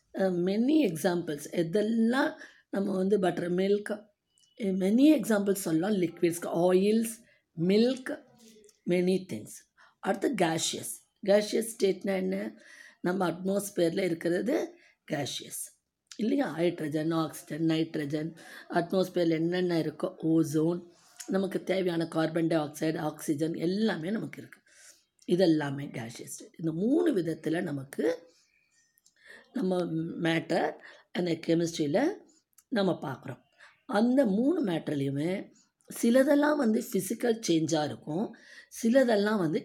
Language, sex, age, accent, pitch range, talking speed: Tamil, female, 20-39, native, 165-220 Hz, 95 wpm